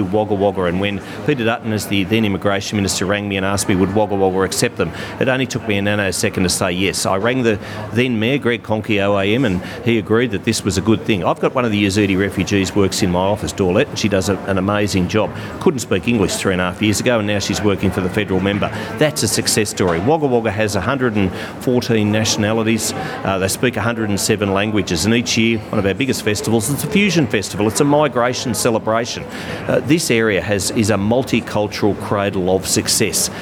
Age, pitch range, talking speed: 40-59, 100-120 Hz, 225 wpm